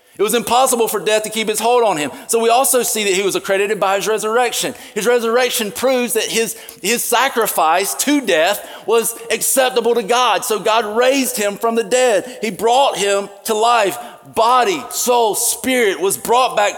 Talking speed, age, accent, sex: 190 wpm, 40-59, American, male